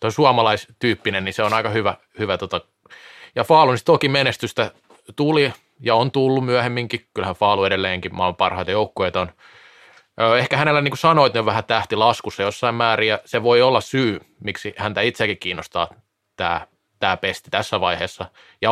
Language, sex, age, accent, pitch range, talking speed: Finnish, male, 20-39, native, 100-130 Hz, 155 wpm